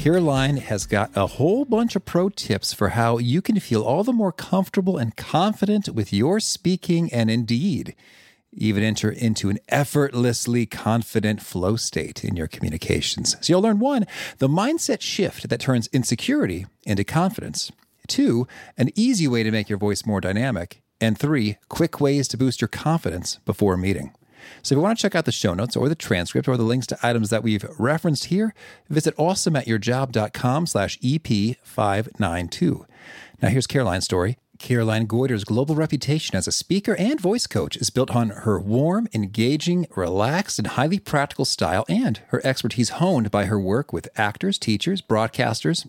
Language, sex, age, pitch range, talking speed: English, male, 40-59, 110-165 Hz, 170 wpm